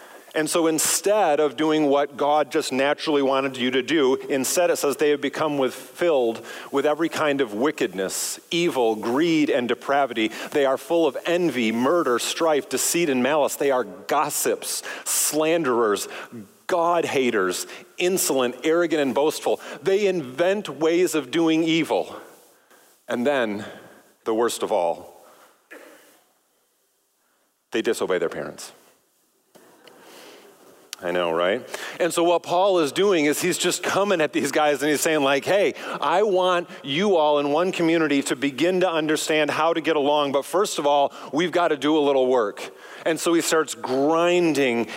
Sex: male